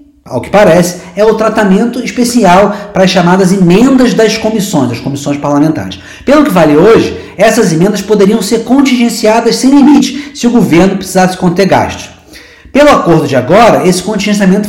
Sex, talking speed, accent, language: male, 160 wpm, Brazilian, Portuguese